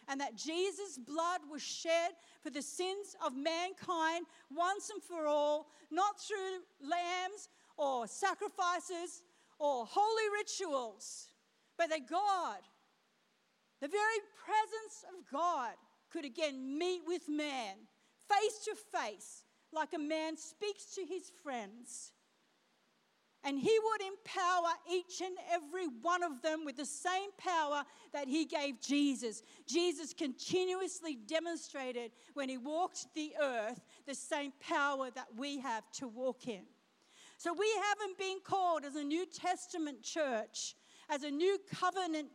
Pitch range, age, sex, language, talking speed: 280-365 Hz, 50-69, female, English, 135 wpm